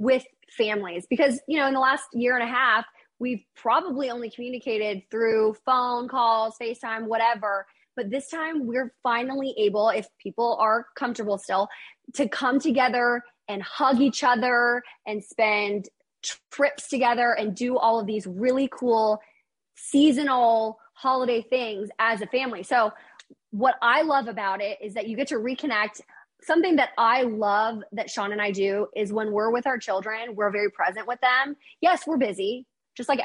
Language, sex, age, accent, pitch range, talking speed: English, female, 20-39, American, 210-260 Hz, 170 wpm